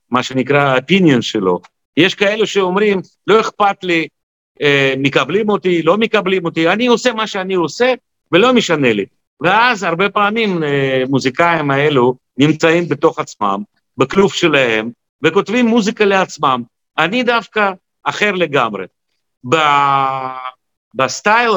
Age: 50-69